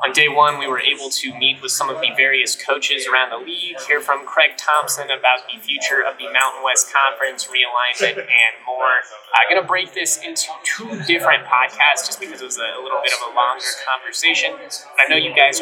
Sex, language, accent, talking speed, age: male, English, American, 215 wpm, 20-39